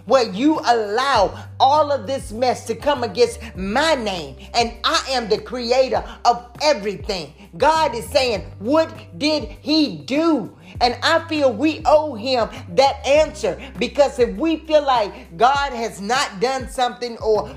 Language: English